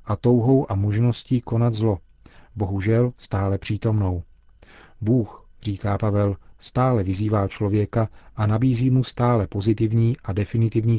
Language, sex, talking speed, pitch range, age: Czech, male, 120 wpm, 100-115 Hz, 40-59